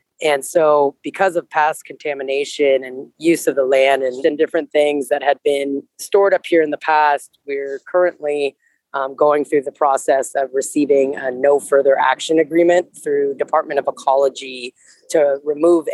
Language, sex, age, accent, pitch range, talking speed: English, female, 30-49, American, 135-165 Hz, 160 wpm